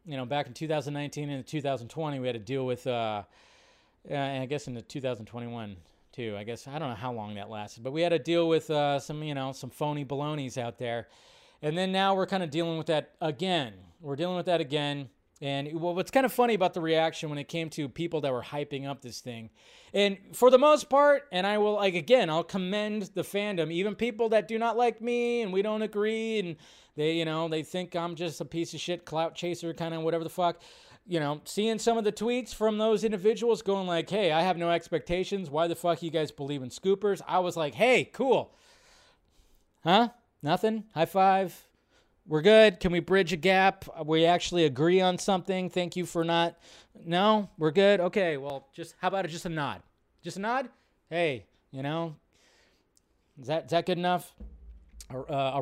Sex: male